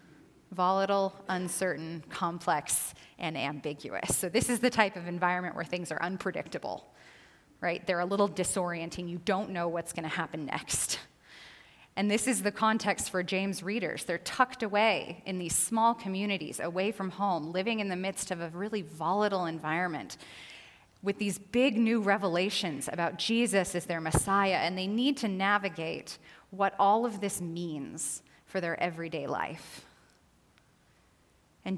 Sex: female